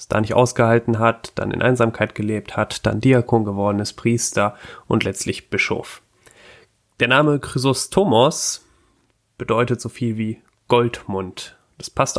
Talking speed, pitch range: 135 wpm, 115-130 Hz